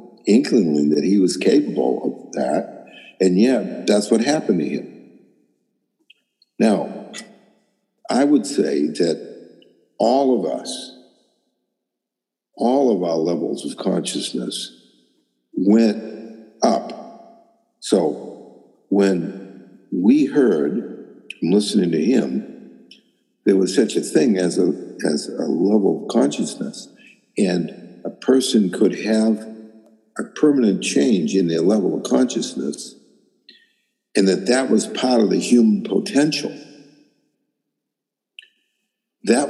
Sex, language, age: male, English, 60-79